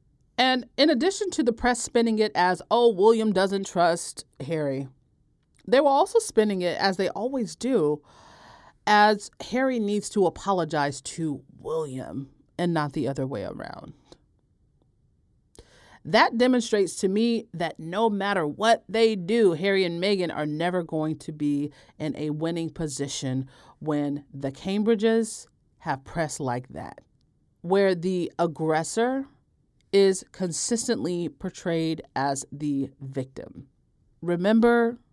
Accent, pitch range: American, 150-220 Hz